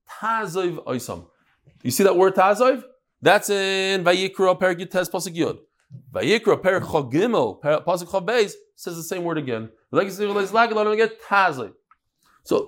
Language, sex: English, male